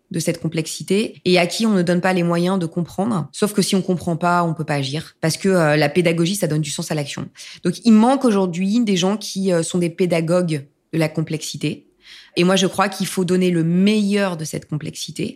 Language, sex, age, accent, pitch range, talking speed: French, female, 20-39, French, 165-195 Hz, 240 wpm